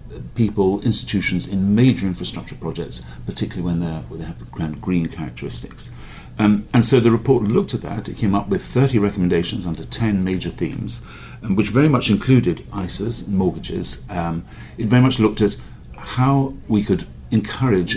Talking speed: 170 wpm